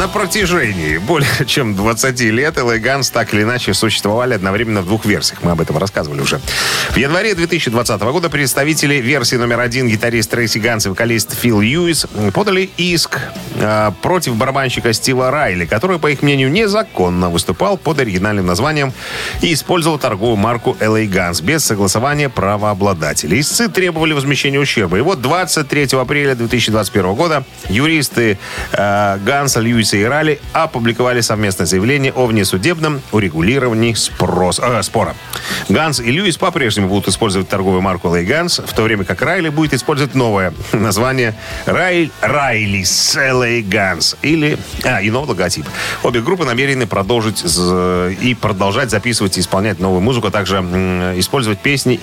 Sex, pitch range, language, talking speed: male, 100-140 Hz, Russian, 150 wpm